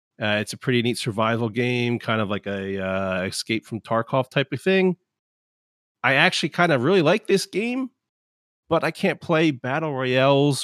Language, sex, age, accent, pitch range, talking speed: English, male, 40-59, American, 100-130 Hz, 180 wpm